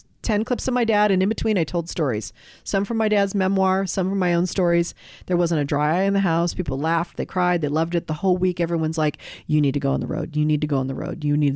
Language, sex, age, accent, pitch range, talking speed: English, female, 40-59, American, 150-195 Hz, 295 wpm